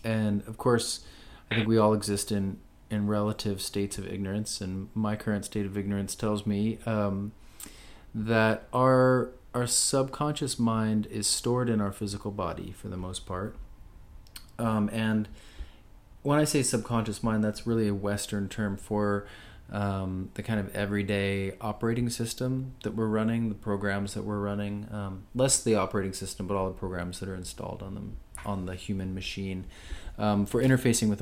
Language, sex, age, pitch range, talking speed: English, male, 30-49, 95-115 Hz, 170 wpm